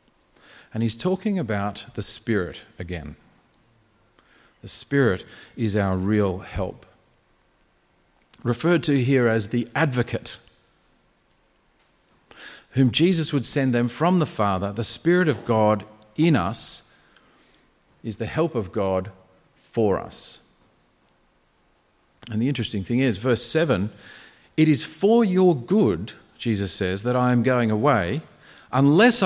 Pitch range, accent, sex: 110-160 Hz, Australian, male